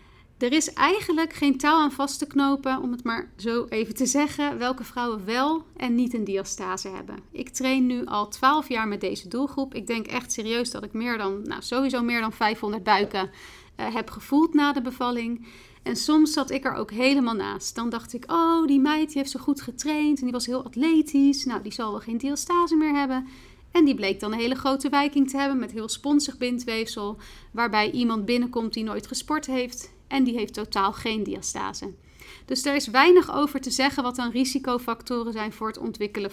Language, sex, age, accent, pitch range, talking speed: Dutch, female, 40-59, Dutch, 230-280 Hz, 210 wpm